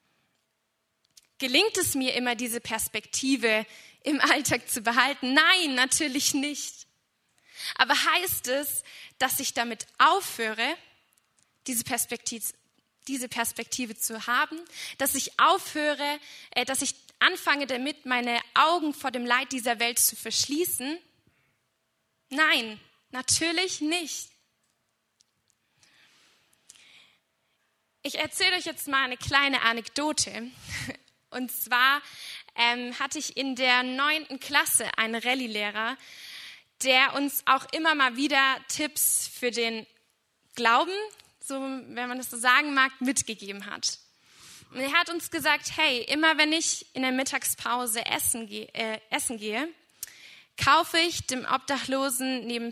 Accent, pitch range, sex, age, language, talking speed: German, 240-300 Hz, female, 20-39, German, 120 wpm